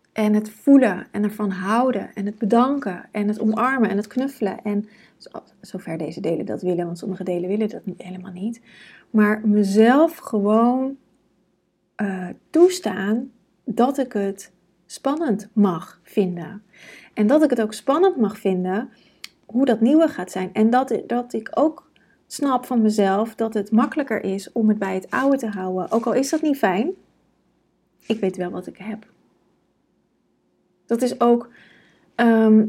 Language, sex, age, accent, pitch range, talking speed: Dutch, female, 30-49, Dutch, 200-240 Hz, 160 wpm